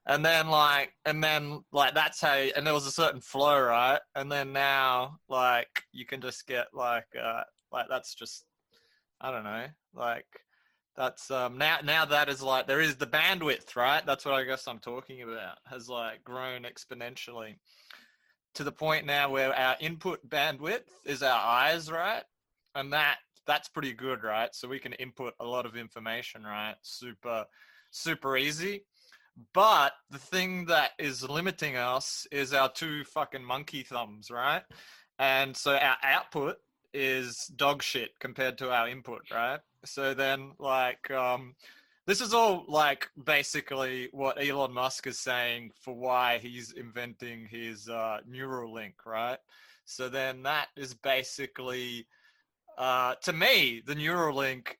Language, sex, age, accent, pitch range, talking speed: English, male, 20-39, Australian, 125-145 Hz, 155 wpm